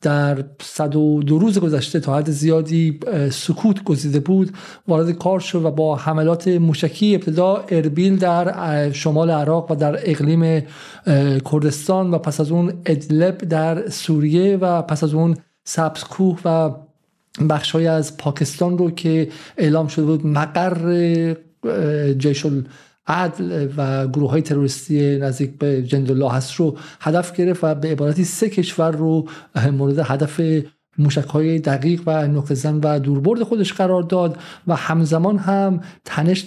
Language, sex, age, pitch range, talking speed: Persian, male, 50-69, 150-175 Hz, 140 wpm